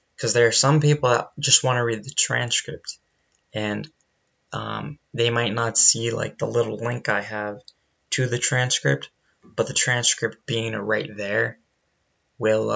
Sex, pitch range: male, 105-120 Hz